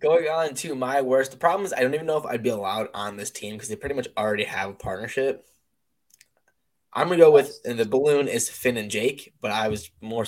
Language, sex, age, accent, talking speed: English, male, 10-29, American, 250 wpm